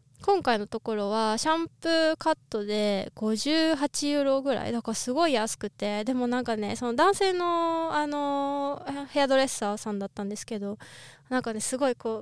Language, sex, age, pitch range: Japanese, female, 20-39, 220-305 Hz